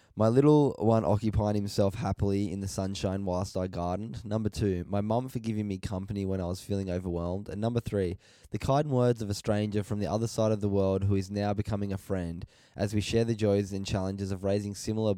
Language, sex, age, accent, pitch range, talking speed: English, male, 10-29, Australian, 95-110 Hz, 225 wpm